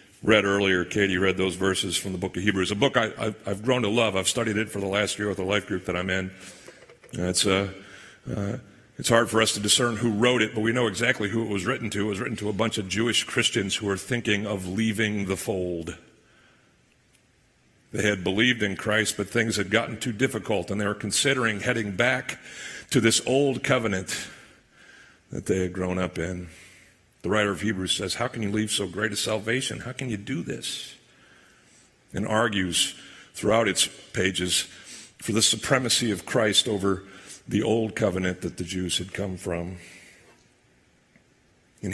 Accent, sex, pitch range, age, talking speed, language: American, male, 95-115 Hz, 50-69, 195 wpm, English